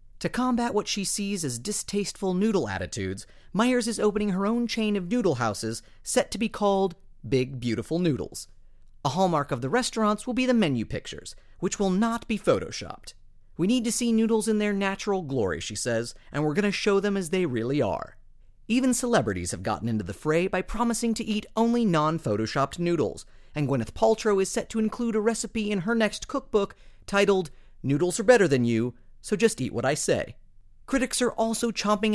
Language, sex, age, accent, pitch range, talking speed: English, male, 30-49, American, 130-215 Hz, 195 wpm